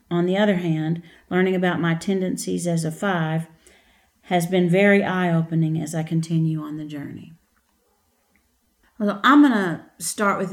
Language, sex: English, female